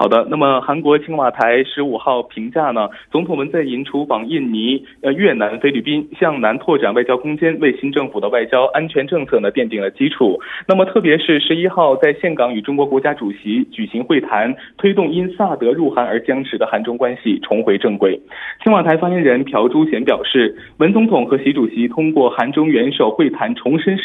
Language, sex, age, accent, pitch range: Korean, male, 20-39, Chinese, 135-205 Hz